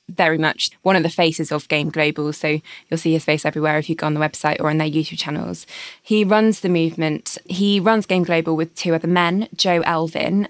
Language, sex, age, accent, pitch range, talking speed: English, female, 20-39, British, 160-175 Hz, 230 wpm